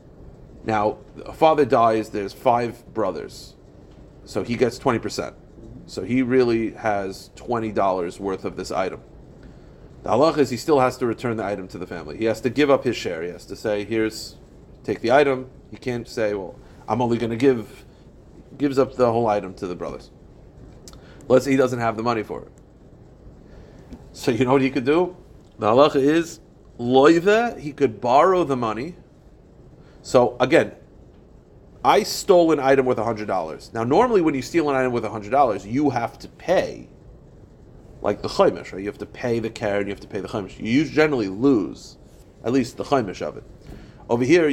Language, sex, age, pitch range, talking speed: English, male, 40-59, 110-135 Hz, 190 wpm